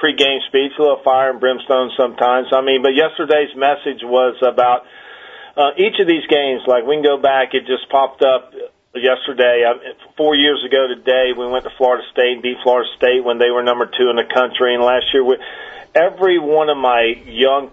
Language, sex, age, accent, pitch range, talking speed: English, male, 40-59, American, 120-145 Hz, 200 wpm